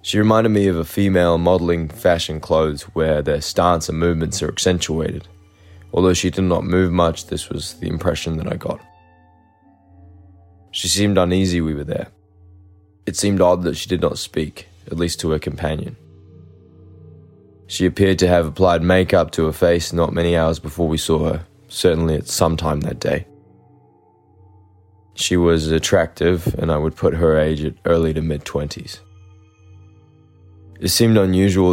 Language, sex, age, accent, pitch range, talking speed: English, male, 20-39, Australian, 80-95 Hz, 165 wpm